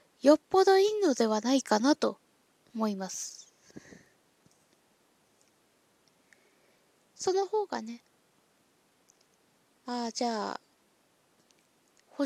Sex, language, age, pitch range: female, Japanese, 20-39, 220-315 Hz